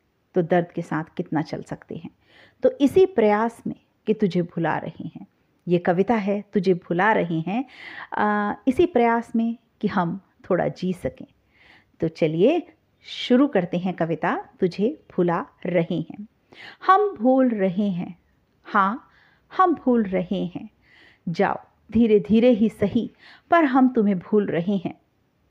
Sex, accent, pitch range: female, native, 190-255 Hz